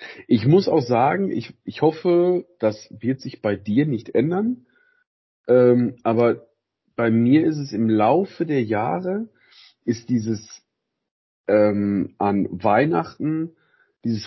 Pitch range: 115-155 Hz